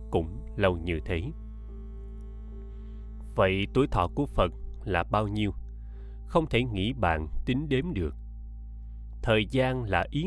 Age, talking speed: 20-39, 135 wpm